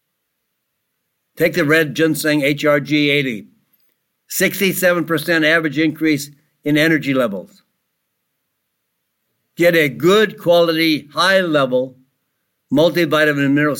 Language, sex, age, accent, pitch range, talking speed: English, male, 60-79, American, 140-170 Hz, 85 wpm